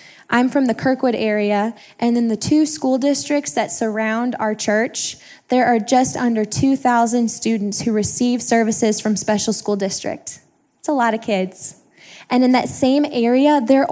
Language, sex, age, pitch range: English, female, 10-29, 210-250 Hz